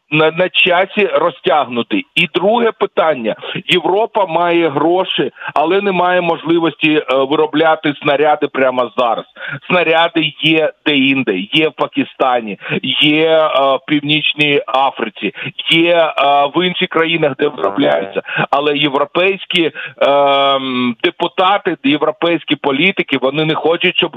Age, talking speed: 40-59, 120 wpm